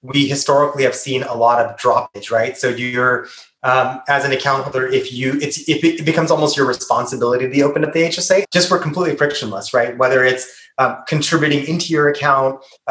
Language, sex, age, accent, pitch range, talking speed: English, male, 30-49, American, 125-150 Hz, 200 wpm